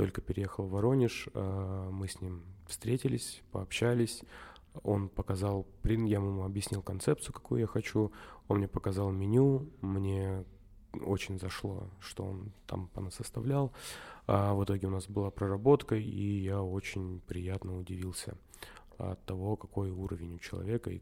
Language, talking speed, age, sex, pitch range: Russian, 140 wpm, 20-39, male, 95-110 Hz